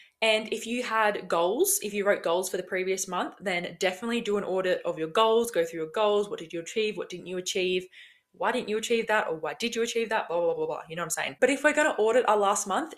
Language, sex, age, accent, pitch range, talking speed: English, female, 20-39, Australian, 180-240 Hz, 285 wpm